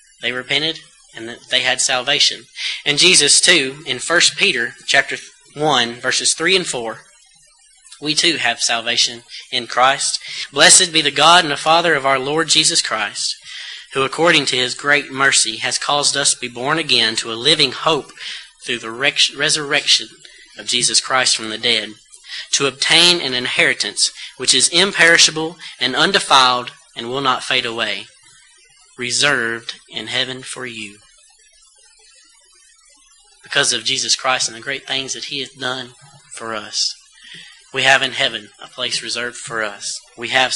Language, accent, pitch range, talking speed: English, American, 120-155 Hz, 155 wpm